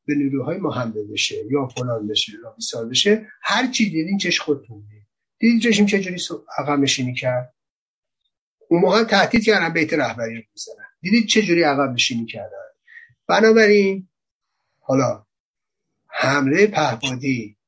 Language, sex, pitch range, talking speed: Persian, male, 130-185 Hz, 130 wpm